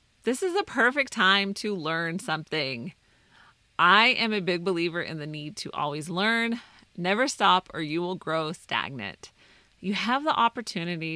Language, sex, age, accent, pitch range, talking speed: English, female, 30-49, American, 170-230 Hz, 160 wpm